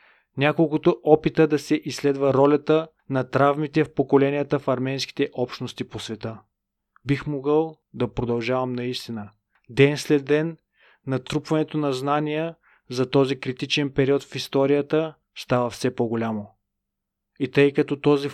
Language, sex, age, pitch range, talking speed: Bulgarian, male, 30-49, 130-145 Hz, 130 wpm